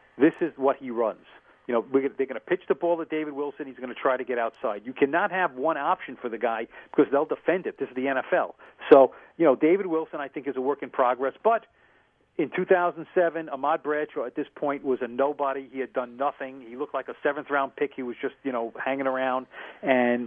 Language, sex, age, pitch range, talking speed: English, male, 40-59, 130-150 Hz, 235 wpm